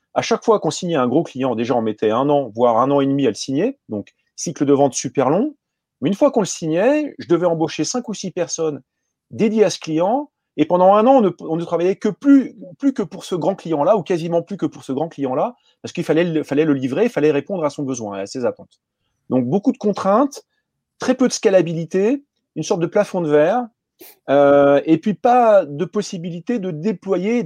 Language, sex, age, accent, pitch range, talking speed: French, male, 30-49, French, 155-215 Hz, 235 wpm